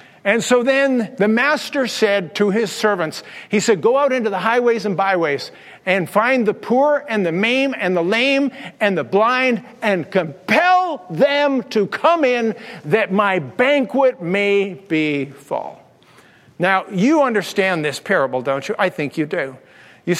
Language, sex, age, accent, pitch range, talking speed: English, male, 50-69, American, 180-245 Hz, 165 wpm